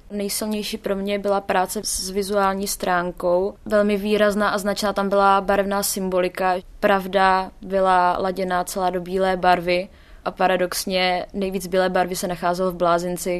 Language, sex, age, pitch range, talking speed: Czech, female, 20-39, 185-215 Hz, 145 wpm